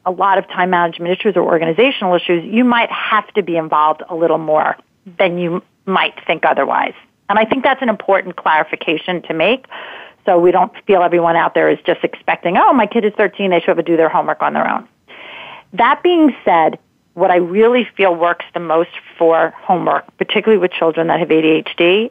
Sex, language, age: female, English, 40-59